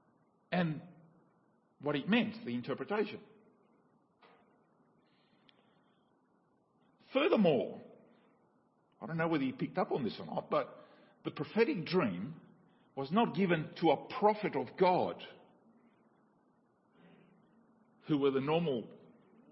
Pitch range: 150-230 Hz